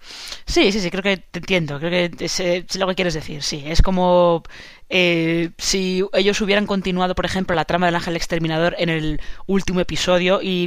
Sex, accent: female, Spanish